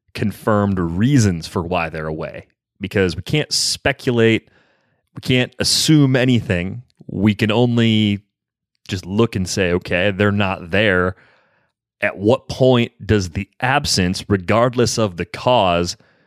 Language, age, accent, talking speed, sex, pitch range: English, 30-49, American, 130 wpm, male, 90-110 Hz